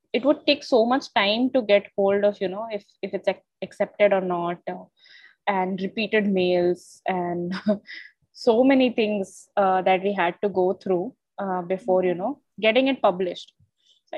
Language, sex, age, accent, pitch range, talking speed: English, female, 20-39, Indian, 185-245 Hz, 175 wpm